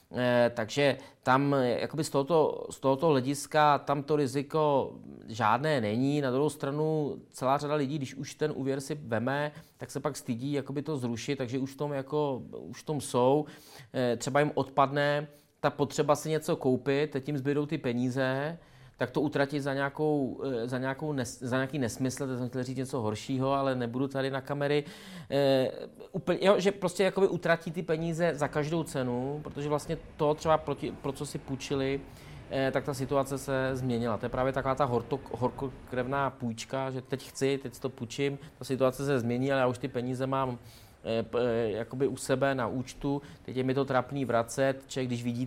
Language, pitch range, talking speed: Czech, 130-145 Hz, 180 wpm